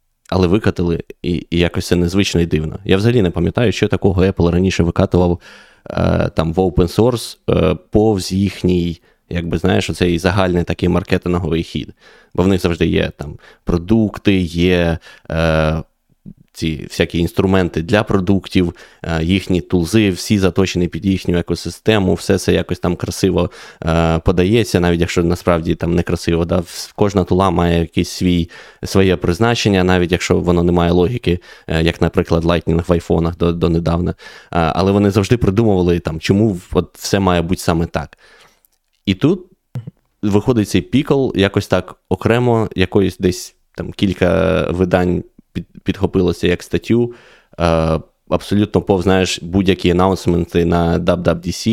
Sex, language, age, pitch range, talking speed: male, Ukrainian, 20-39, 85-100 Hz, 140 wpm